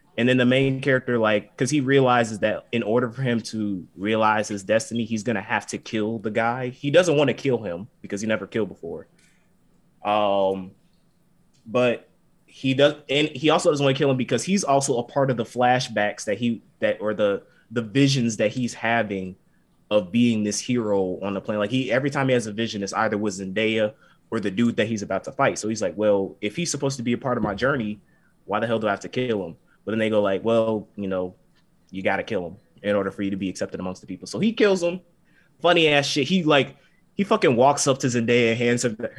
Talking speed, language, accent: 240 wpm, English, American